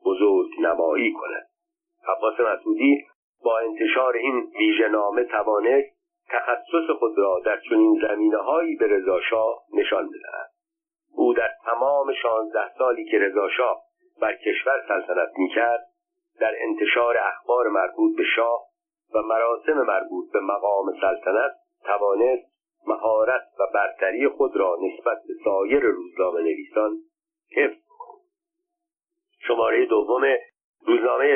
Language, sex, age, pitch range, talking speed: Persian, male, 50-69, 325-405 Hz, 110 wpm